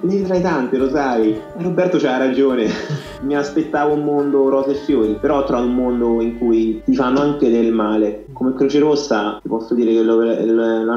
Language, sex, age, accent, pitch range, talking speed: Italian, male, 20-39, native, 105-125 Hz, 195 wpm